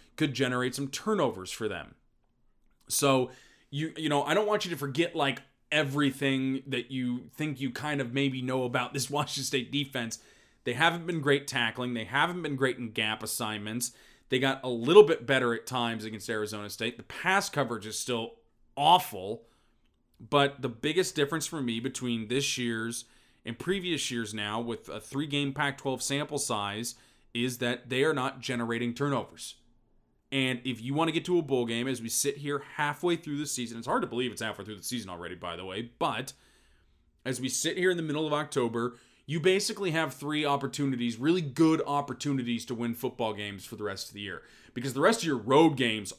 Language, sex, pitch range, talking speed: English, male, 115-145 Hz, 195 wpm